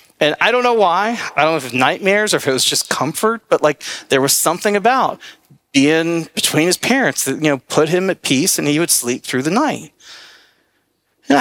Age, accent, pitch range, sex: 40-59, American, 135-160 Hz, male